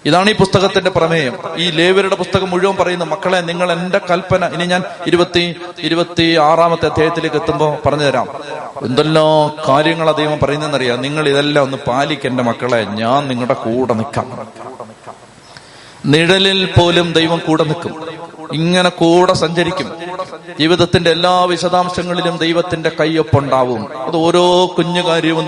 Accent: native